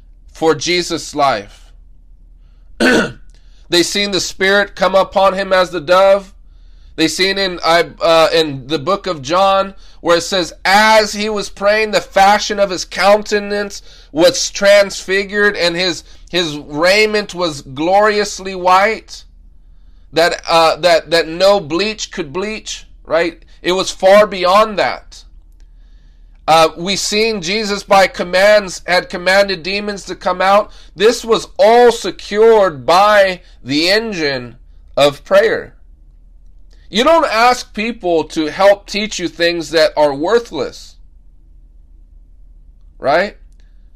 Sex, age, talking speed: male, 30-49, 125 wpm